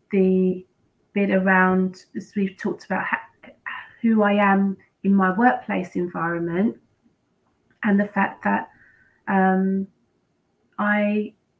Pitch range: 185-220 Hz